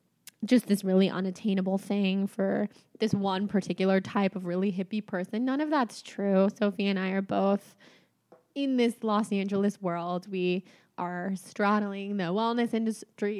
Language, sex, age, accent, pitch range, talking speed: English, female, 20-39, American, 195-235 Hz, 150 wpm